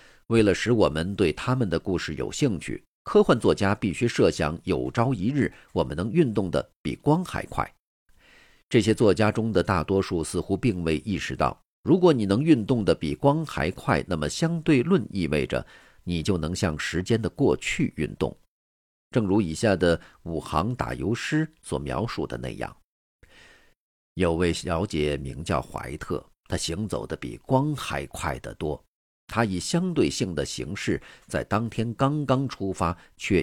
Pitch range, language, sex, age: 80-130 Hz, Chinese, male, 50-69